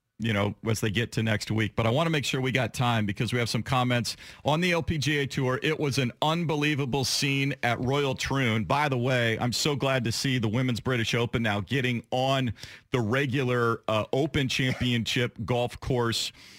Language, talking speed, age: English, 205 wpm, 40-59